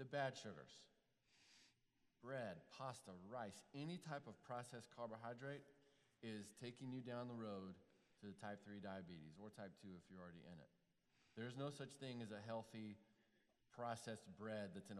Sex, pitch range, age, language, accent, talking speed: male, 100-115 Hz, 40-59, English, American, 165 wpm